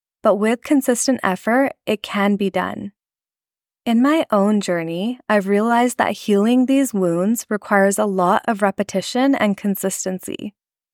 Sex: female